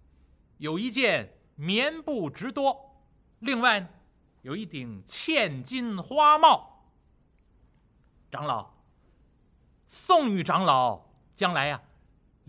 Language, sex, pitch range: Chinese, male, 175-270 Hz